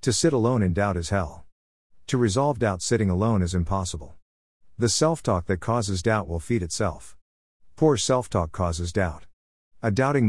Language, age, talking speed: English, 50-69, 175 wpm